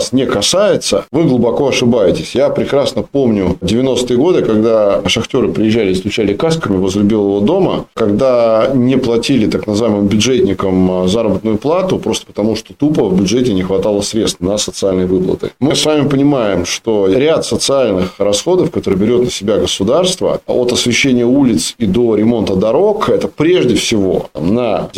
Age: 20-39